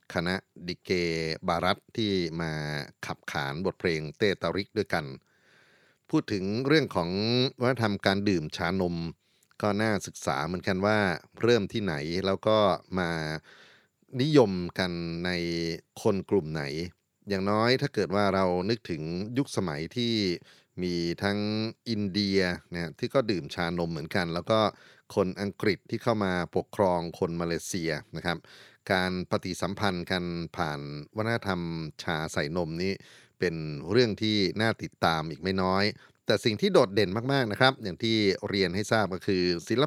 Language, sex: Thai, male